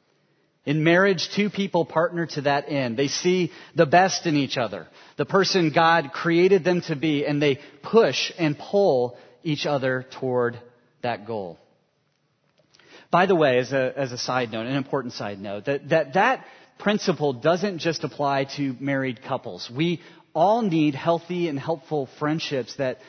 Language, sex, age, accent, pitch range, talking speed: English, male, 30-49, American, 130-170 Hz, 165 wpm